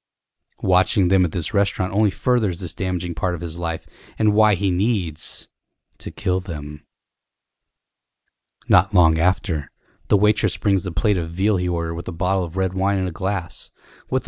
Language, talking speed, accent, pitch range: English, 175 wpm, American, 90-110 Hz